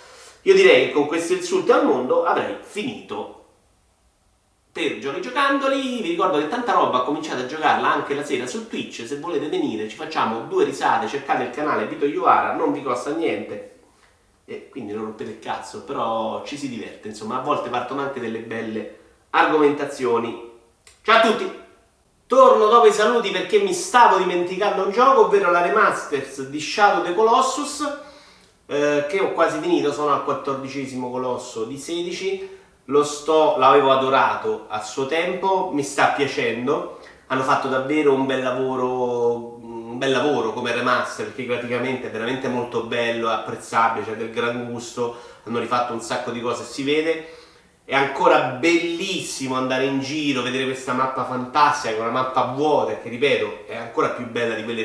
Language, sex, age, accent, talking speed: Italian, male, 30-49, native, 170 wpm